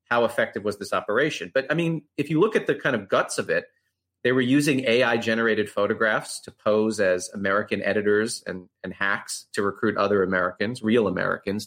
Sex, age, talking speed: male, 30-49, 195 wpm